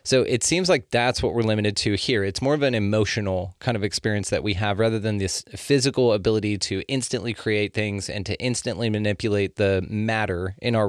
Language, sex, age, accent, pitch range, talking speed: English, male, 20-39, American, 105-120 Hz, 210 wpm